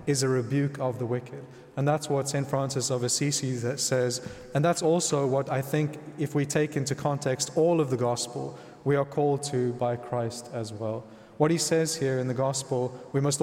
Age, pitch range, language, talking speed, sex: 30-49, 125-150 Hz, English, 205 wpm, male